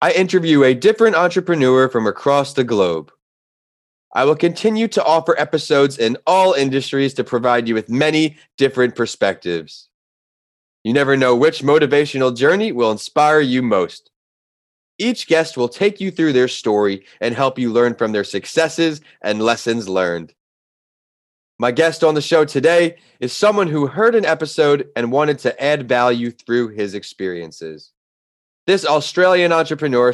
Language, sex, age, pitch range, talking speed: English, male, 20-39, 115-155 Hz, 150 wpm